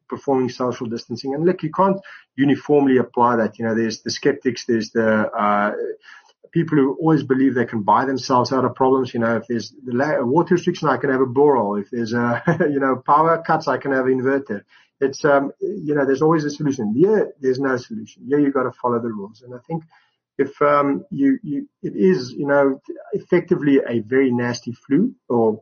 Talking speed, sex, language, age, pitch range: 210 wpm, male, English, 30-49, 120-160 Hz